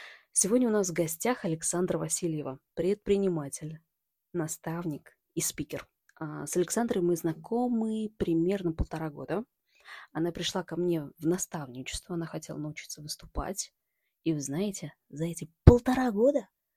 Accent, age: native, 20-39